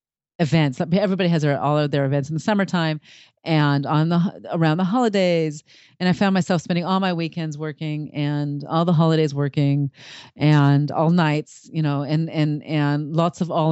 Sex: female